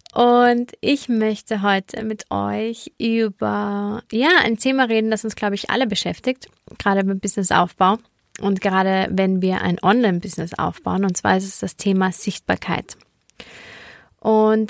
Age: 20-39